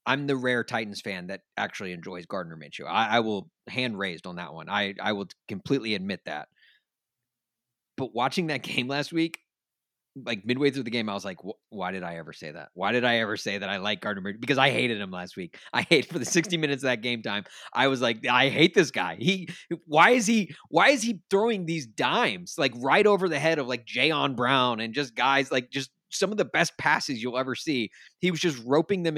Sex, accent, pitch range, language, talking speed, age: male, American, 110-155 Hz, English, 230 wpm, 30-49